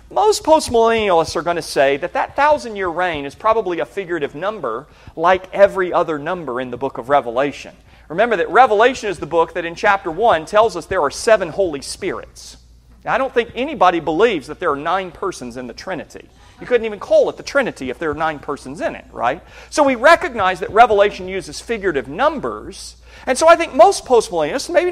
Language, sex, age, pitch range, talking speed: English, male, 40-59, 160-265 Hz, 200 wpm